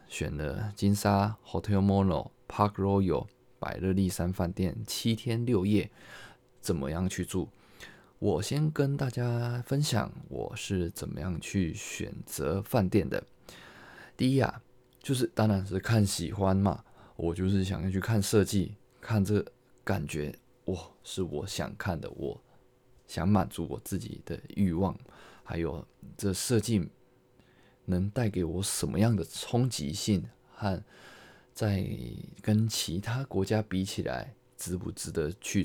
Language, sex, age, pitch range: Chinese, male, 20-39, 95-120 Hz